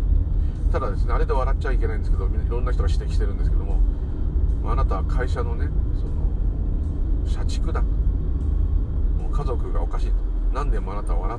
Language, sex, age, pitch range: Japanese, male, 40-59, 75-85 Hz